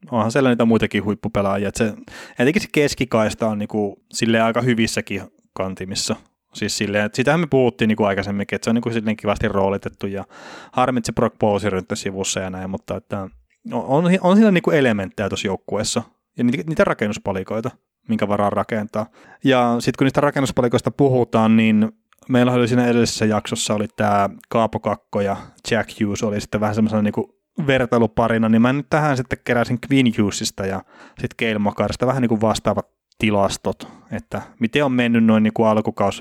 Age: 20-39